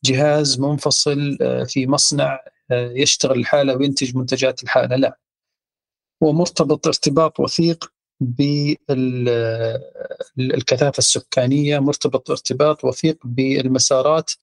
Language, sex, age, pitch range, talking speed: Arabic, male, 40-59, 135-165 Hz, 80 wpm